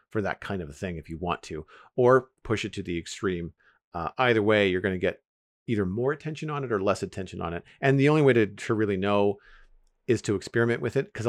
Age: 40-59